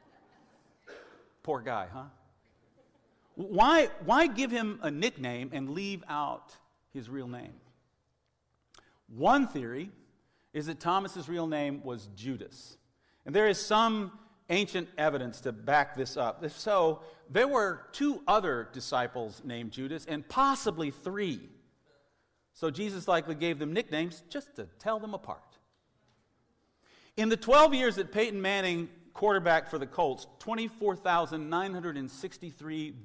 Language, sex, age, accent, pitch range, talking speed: English, male, 50-69, American, 135-195 Hz, 125 wpm